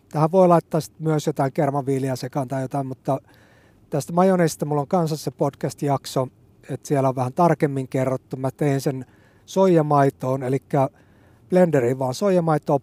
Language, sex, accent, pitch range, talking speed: Finnish, male, native, 125-150 Hz, 145 wpm